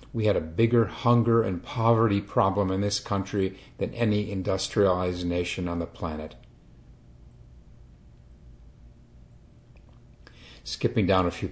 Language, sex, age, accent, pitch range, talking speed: English, male, 50-69, American, 80-110 Hz, 115 wpm